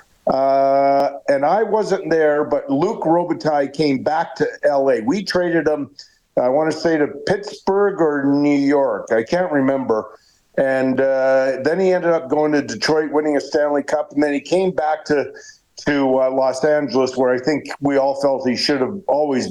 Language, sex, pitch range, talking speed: English, male, 130-155 Hz, 185 wpm